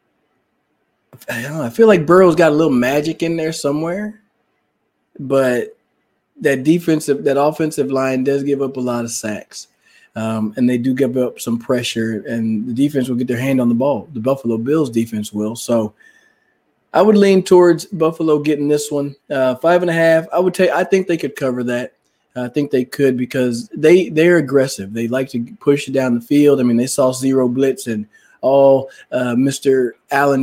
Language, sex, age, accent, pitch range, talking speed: English, male, 20-39, American, 125-150 Hz, 195 wpm